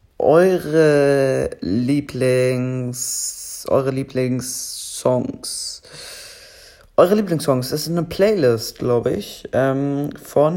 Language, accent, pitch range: German, German, 125-155 Hz